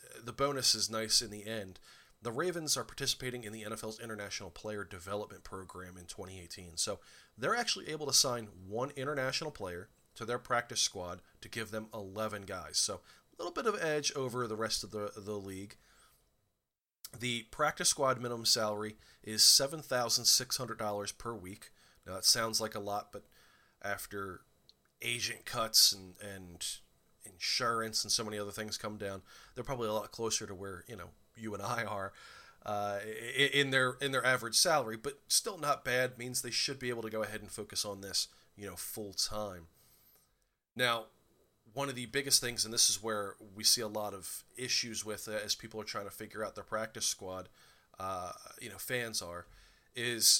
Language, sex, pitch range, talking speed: English, male, 100-120 Hz, 190 wpm